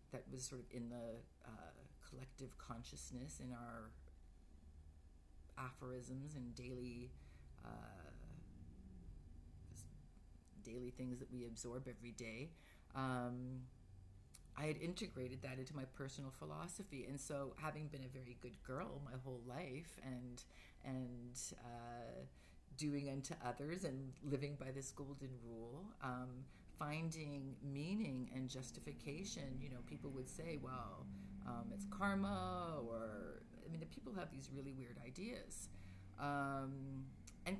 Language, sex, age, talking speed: English, female, 40-59, 125 wpm